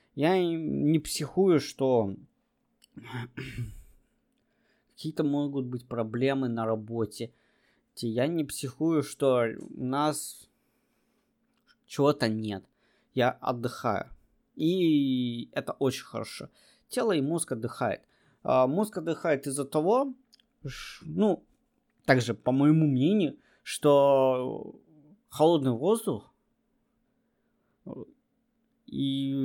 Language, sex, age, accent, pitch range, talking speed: Russian, male, 20-39, native, 130-195 Hz, 85 wpm